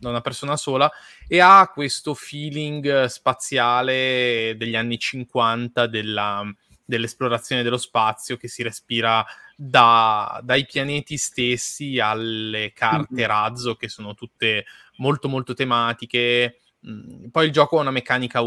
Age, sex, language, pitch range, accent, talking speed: 20-39, male, Italian, 110-130 Hz, native, 115 wpm